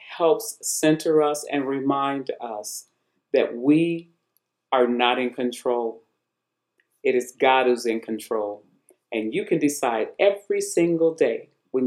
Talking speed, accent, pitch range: 130 wpm, American, 125-165 Hz